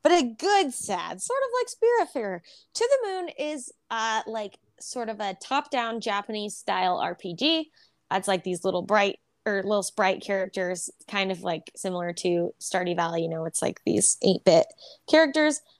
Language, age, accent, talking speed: English, 20-39, American, 165 wpm